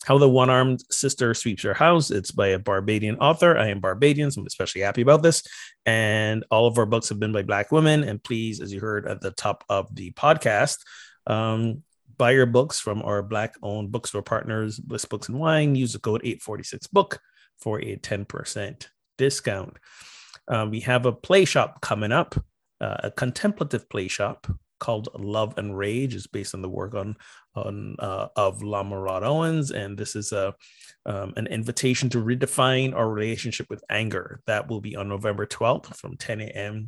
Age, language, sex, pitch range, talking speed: 30-49, English, male, 105-140 Hz, 185 wpm